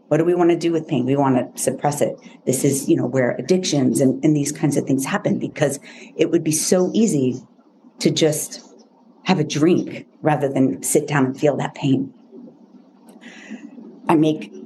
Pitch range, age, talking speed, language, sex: 145-245 Hz, 50-69, 190 wpm, English, female